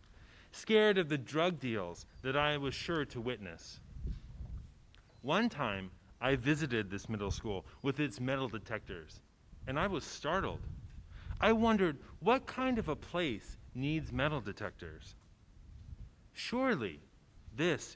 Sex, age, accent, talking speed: male, 30-49, American, 125 wpm